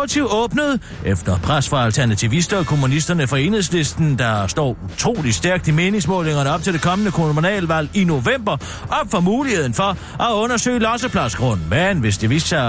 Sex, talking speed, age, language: male, 160 wpm, 40-59, Danish